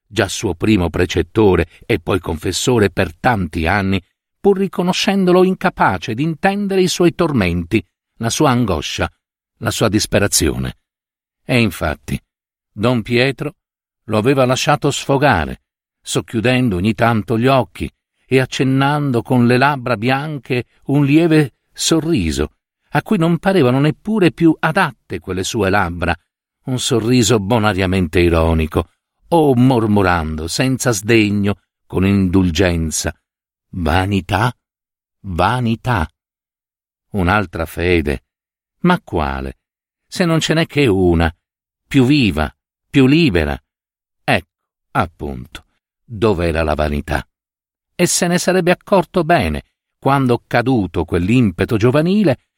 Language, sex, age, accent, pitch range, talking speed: Italian, male, 50-69, native, 90-145 Hz, 110 wpm